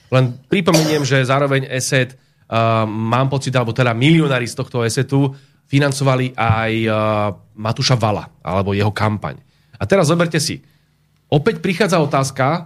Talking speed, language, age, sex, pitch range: 135 wpm, Slovak, 30-49, male, 120-155 Hz